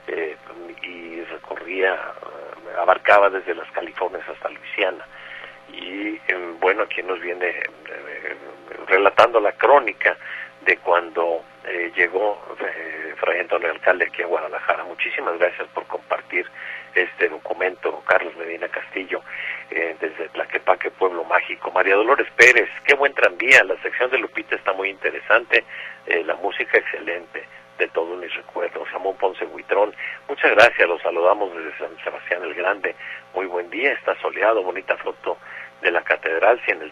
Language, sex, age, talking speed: Spanish, male, 50-69, 150 wpm